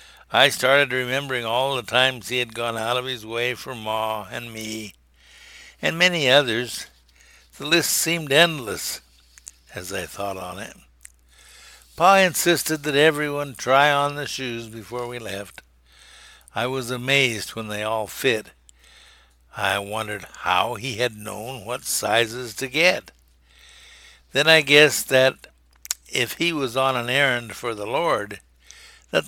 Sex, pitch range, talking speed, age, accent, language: male, 95-135 Hz, 145 wpm, 60-79, American, English